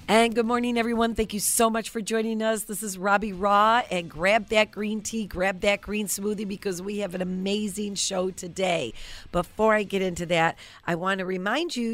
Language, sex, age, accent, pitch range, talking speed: English, female, 40-59, American, 155-200 Hz, 205 wpm